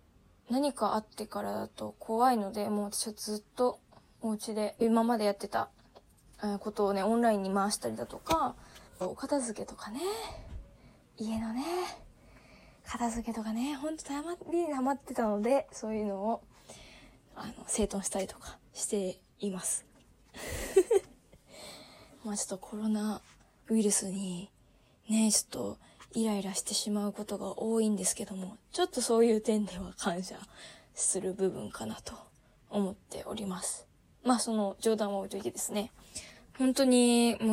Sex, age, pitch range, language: female, 20-39, 205-235 Hz, Japanese